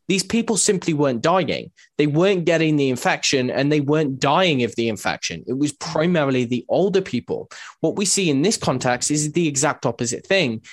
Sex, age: male, 20-39